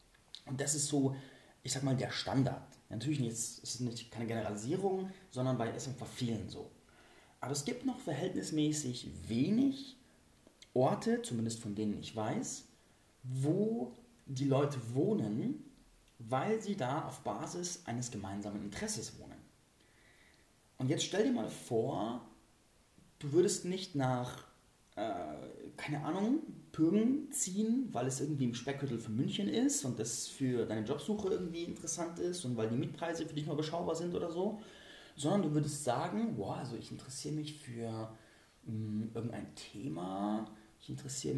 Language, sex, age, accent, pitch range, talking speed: German, male, 30-49, German, 115-165 Hz, 150 wpm